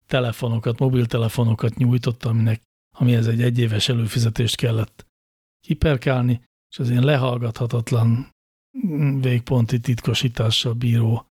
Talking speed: 90 wpm